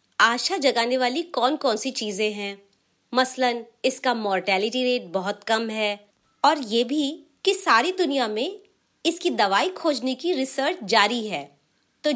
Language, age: Hindi, 30-49